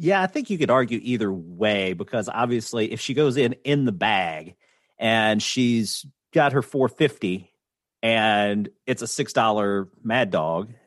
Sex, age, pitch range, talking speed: male, 40-59, 95-135 Hz, 160 wpm